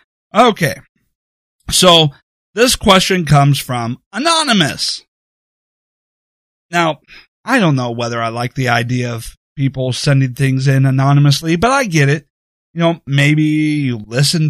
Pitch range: 130-170 Hz